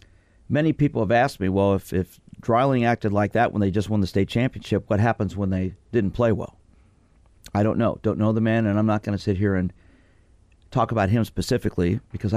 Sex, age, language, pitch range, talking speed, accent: male, 50-69, English, 90-110 Hz, 225 wpm, American